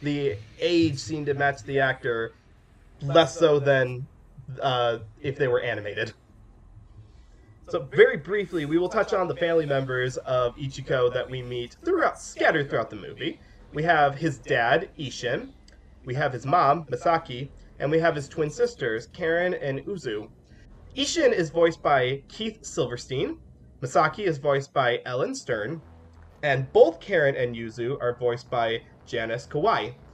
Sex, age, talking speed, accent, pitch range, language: male, 20-39, 150 wpm, American, 120-165 Hz, English